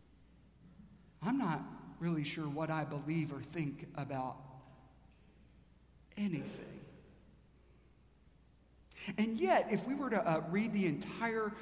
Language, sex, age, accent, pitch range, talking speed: English, male, 50-69, American, 165-240 Hz, 110 wpm